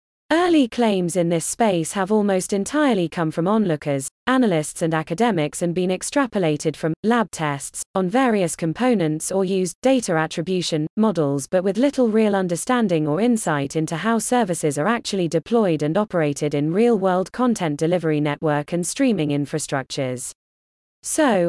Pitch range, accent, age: 155-230 Hz, British, 20-39